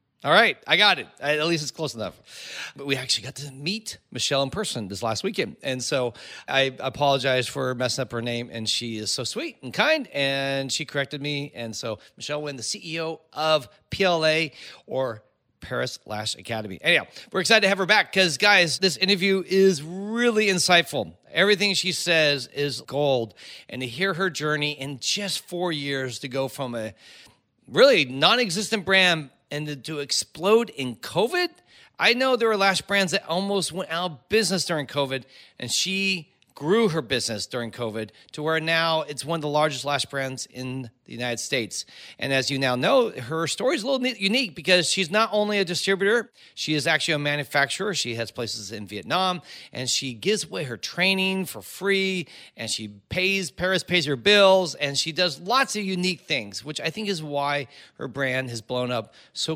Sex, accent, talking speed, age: male, American, 190 wpm, 40-59